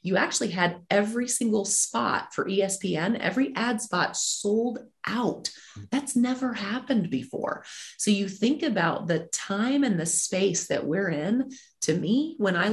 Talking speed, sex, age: 155 wpm, female, 30-49